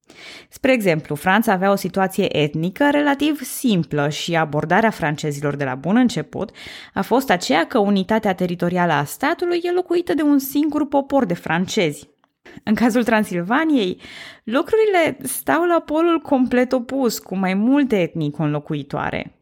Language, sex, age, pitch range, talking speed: Romanian, female, 20-39, 165-255 Hz, 140 wpm